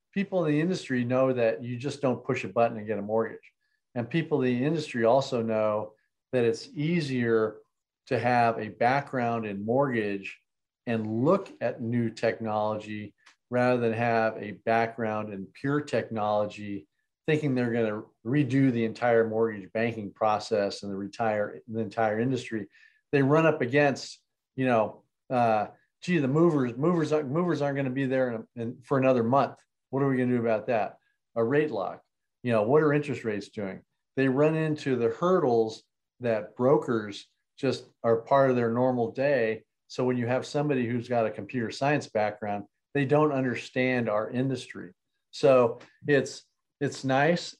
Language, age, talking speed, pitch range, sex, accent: English, 40-59, 170 wpm, 110-140 Hz, male, American